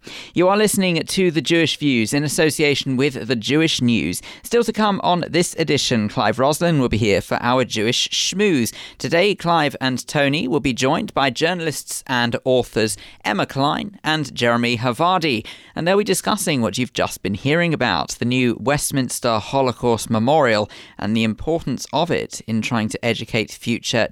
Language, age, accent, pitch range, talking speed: English, 40-59, British, 115-160 Hz, 170 wpm